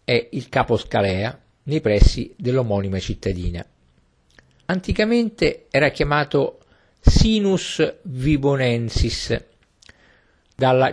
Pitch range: 95-130 Hz